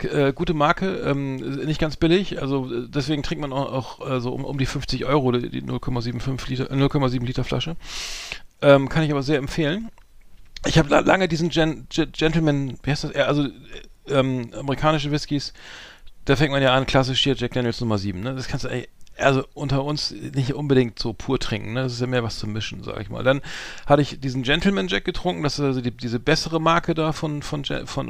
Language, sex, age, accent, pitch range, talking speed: German, male, 40-59, German, 125-155 Hz, 210 wpm